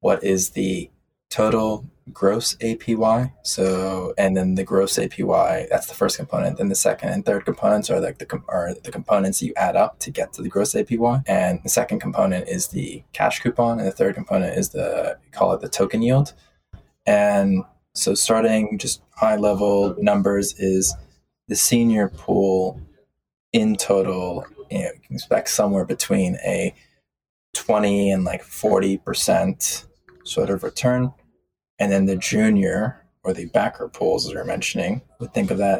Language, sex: English, male